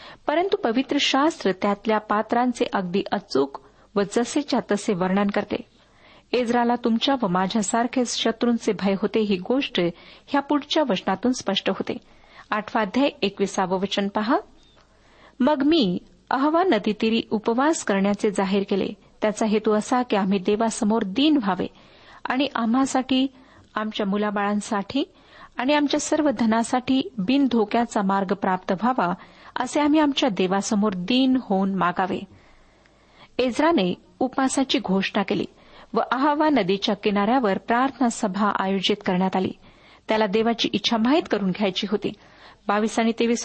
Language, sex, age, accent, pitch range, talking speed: Marathi, female, 40-59, native, 205-270 Hz, 120 wpm